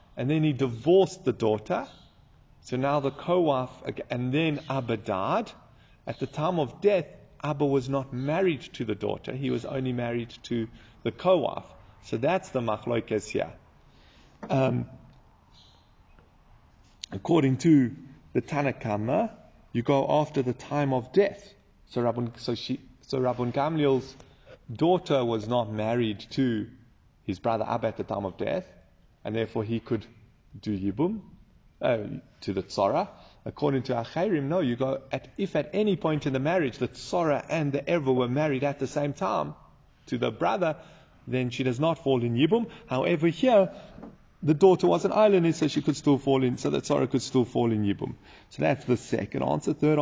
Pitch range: 120-160 Hz